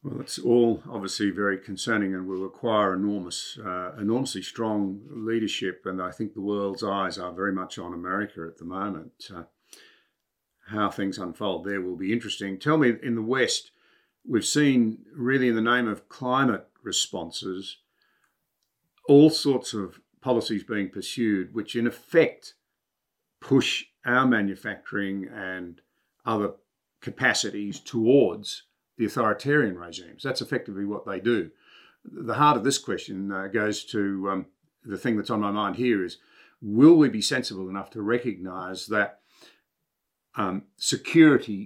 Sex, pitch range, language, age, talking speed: male, 100-120 Hz, English, 50-69, 145 wpm